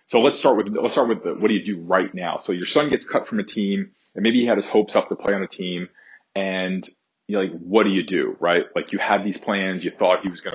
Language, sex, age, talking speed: English, male, 40-59, 295 wpm